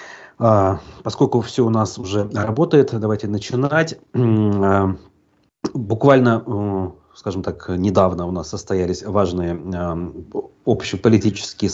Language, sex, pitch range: Russian, male, 95-125 Hz